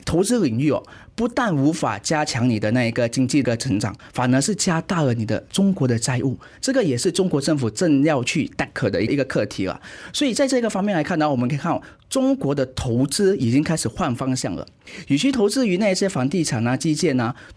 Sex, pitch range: male, 125-190 Hz